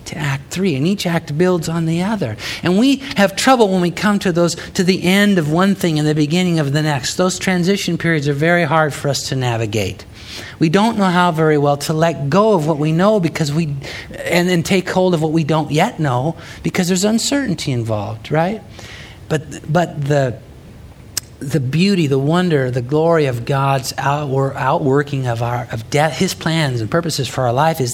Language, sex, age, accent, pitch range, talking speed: English, male, 50-69, American, 135-175 Hz, 205 wpm